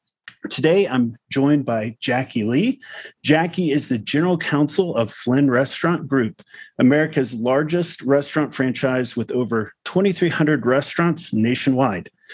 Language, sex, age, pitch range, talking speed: English, male, 40-59, 120-160 Hz, 115 wpm